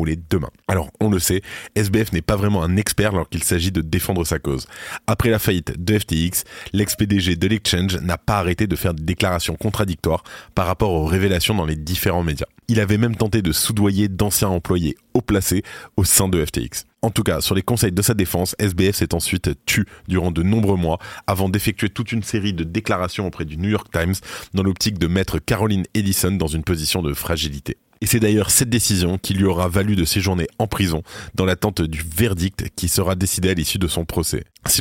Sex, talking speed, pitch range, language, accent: male, 205 wpm, 85-105 Hz, French, French